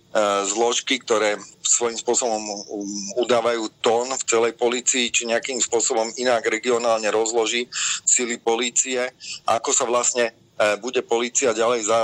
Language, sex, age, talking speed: Slovak, male, 40-59, 115 wpm